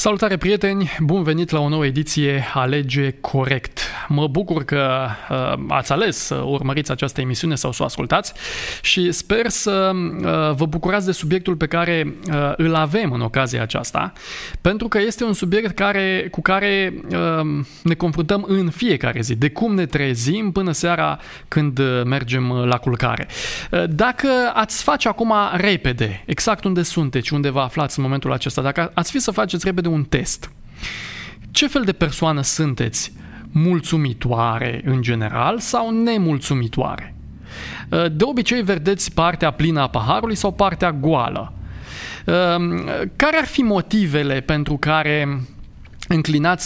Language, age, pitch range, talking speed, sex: Romanian, 20-39, 140-190 Hz, 140 wpm, male